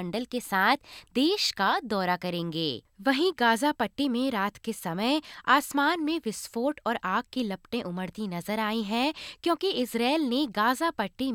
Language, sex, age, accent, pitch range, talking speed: Hindi, female, 20-39, native, 215-305 Hz, 160 wpm